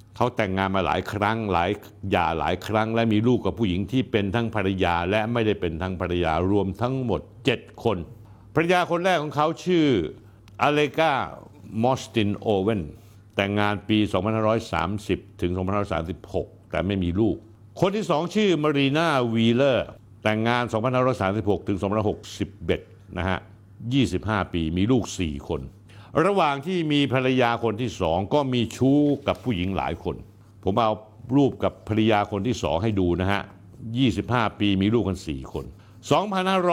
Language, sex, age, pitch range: Thai, male, 60-79, 95-125 Hz